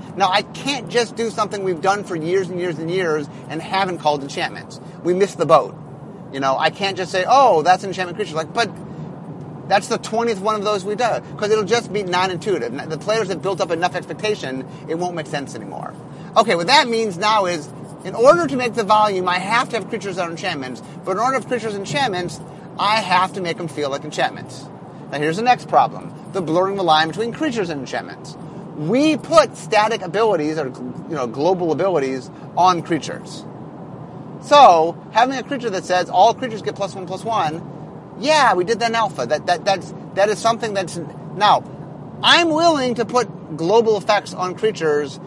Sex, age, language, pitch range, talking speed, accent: male, 30-49, English, 165-220 Hz, 205 wpm, American